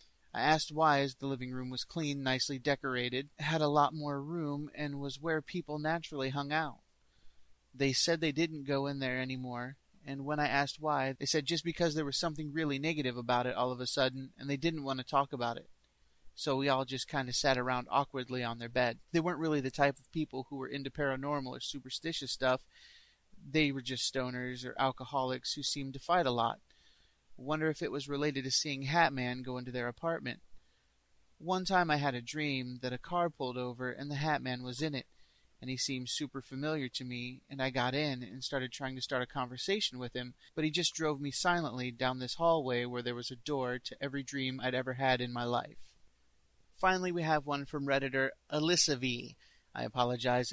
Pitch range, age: 125-150 Hz, 30-49